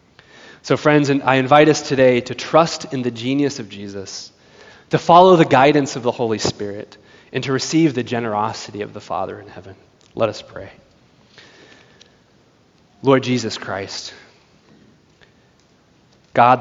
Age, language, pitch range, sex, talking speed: 20-39, English, 110-135 Hz, male, 135 wpm